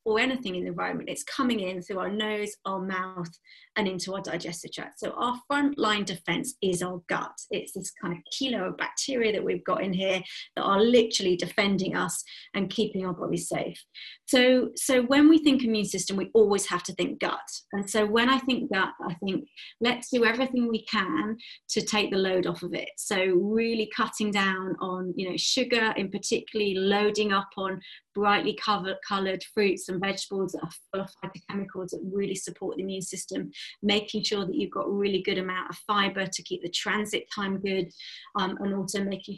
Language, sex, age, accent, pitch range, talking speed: English, female, 30-49, British, 185-225 Hz, 200 wpm